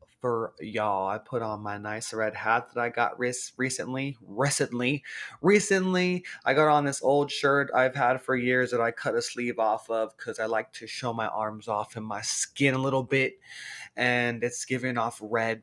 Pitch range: 120-150 Hz